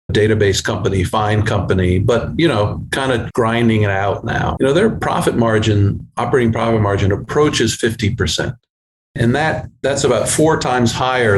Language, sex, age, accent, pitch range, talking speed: English, male, 50-69, American, 100-120 Hz, 160 wpm